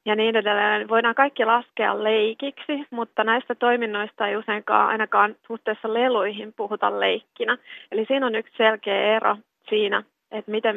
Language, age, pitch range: Finnish, 30-49, 210-230 Hz